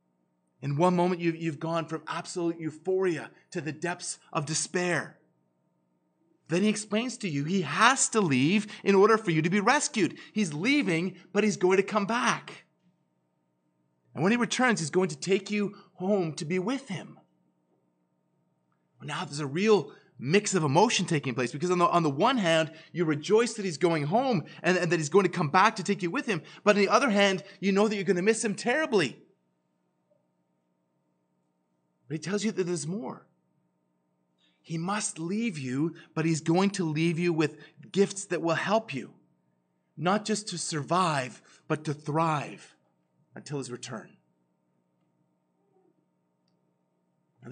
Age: 30-49